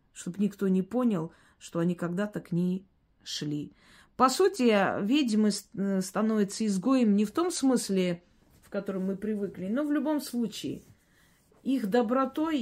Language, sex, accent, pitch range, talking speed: Russian, female, native, 170-215 Hz, 140 wpm